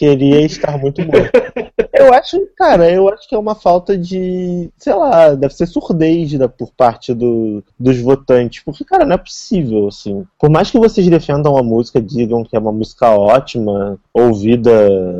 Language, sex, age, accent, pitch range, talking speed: Portuguese, male, 20-39, Brazilian, 120-170 Hz, 170 wpm